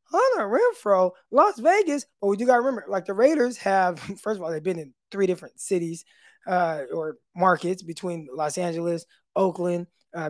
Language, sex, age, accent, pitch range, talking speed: English, male, 20-39, American, 180-245 Hz, 185 wpm